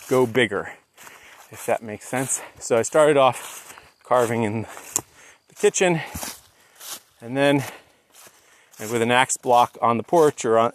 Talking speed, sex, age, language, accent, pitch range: 145 wpm, male, 30-49, English, American, 120-145 Hz